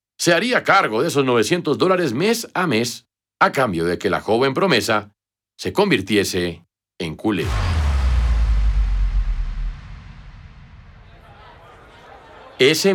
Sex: male